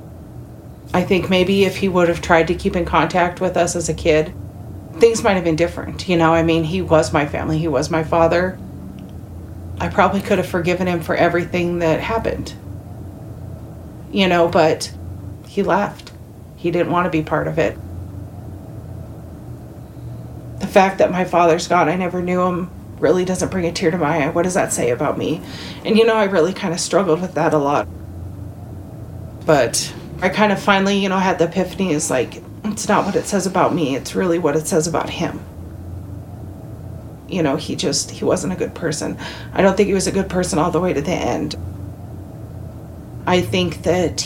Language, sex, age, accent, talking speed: English, female, 30-49, American, 195 wpm